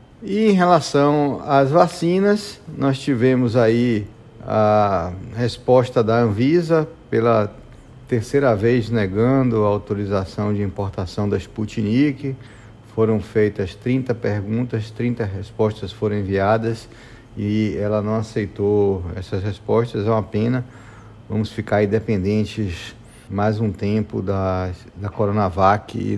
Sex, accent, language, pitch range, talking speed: male, Brazilian, Portuguese, 100-115 Hz, 115 wpm